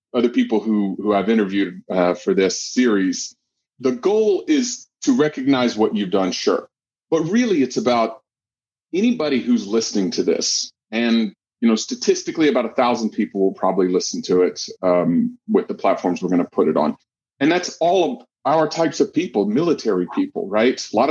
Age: 30-49